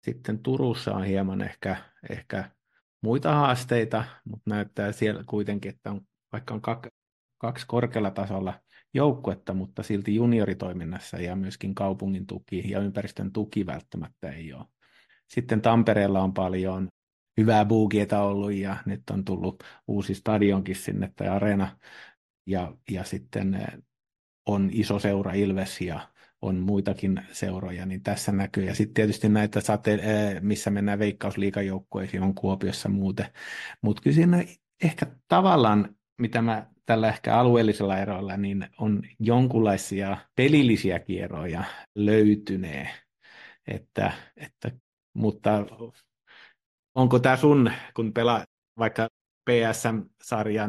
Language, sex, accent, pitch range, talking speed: Finnish, male, native, 95-110 Hz, 115 wpm